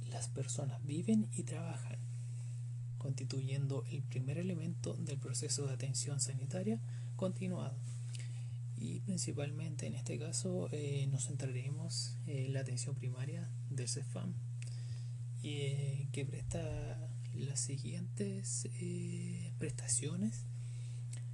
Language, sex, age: Spanish, male, 30-49